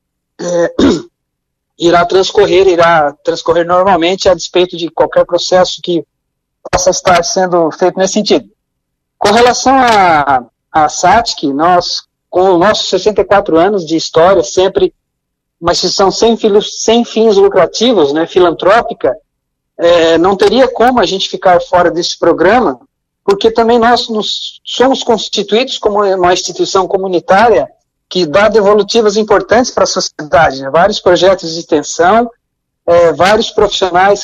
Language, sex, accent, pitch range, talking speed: Portuguese, male, Brazilian, 175-215 Hz, 130 wpm